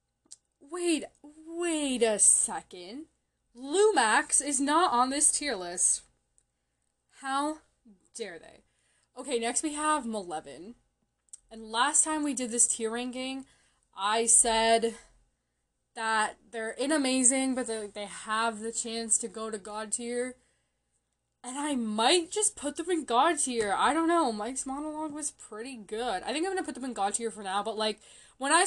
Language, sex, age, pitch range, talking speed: English, female, 20-39, 220-290 Hz, 155 wpm